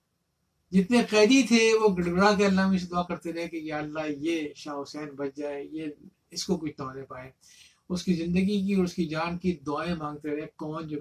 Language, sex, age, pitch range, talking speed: Urdu, male, 50-69, 150-190 Hz, 205 wpm